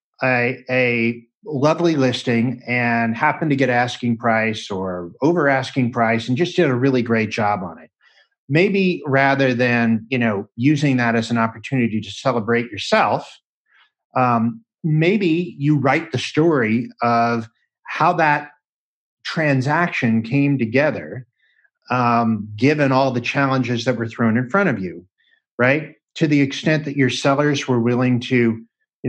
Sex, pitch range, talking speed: male, 115-140 Hz, 145 wpm